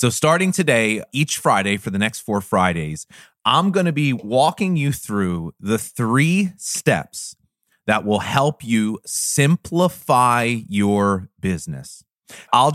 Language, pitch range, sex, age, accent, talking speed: English, 95-130 Hz, male, 30-49, American, 130 wpm